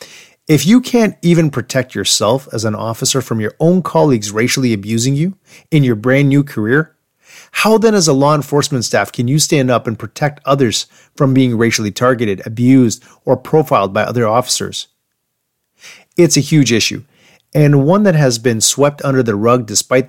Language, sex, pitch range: English, male, 110-140 Hz